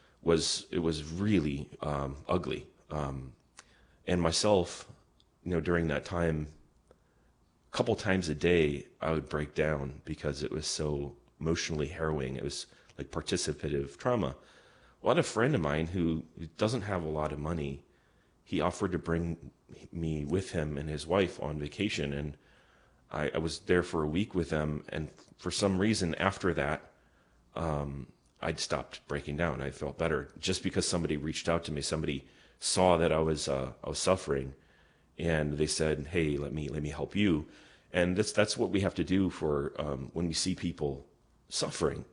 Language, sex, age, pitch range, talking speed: English, male, 30-49, 75-95 Hz, 180 wpm